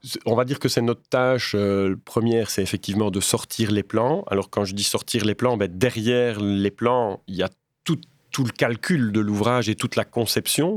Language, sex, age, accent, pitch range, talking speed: French, male, 30-49, French, 100-125 Hz, 215 wpm